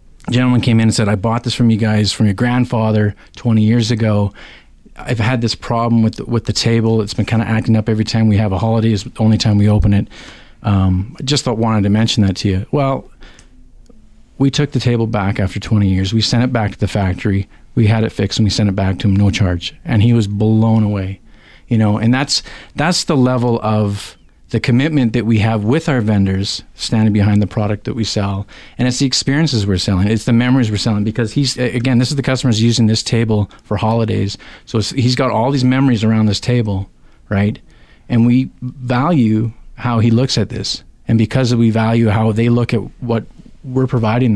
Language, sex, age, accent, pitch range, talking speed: English, male, 40-59, American, 105-120 Hz, 220 wpm